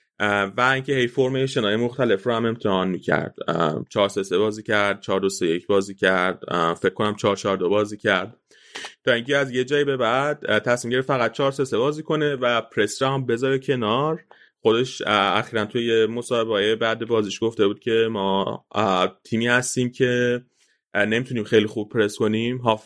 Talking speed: 150 wpm